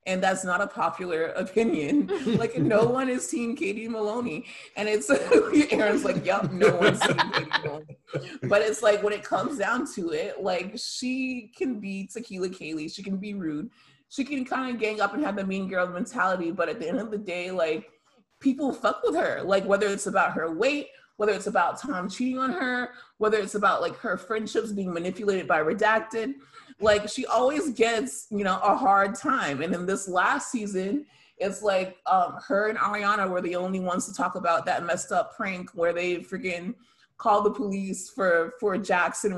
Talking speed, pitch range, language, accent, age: 195 wpm, 190-260 Hz, English, American, 30-49